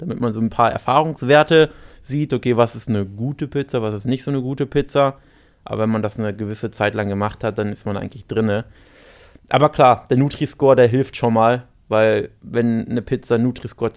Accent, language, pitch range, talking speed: German, German, 110-140 Hz, 205 wpm